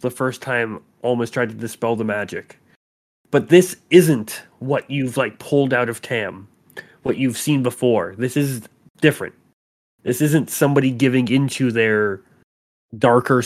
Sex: male